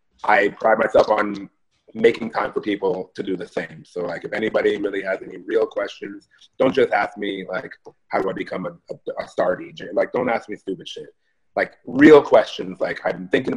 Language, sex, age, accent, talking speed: English, male, 30-49, American, 210 wpm